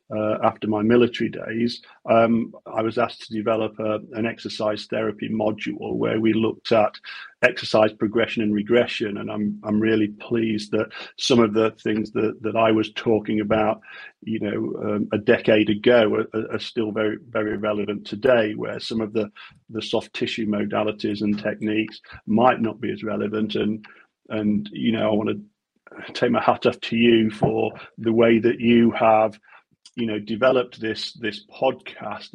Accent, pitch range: British, 110-120 Hz